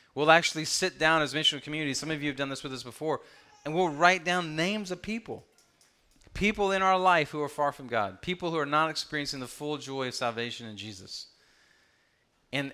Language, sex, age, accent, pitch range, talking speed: English, male, 30-49, American, 130-170 Hz, 215 wpm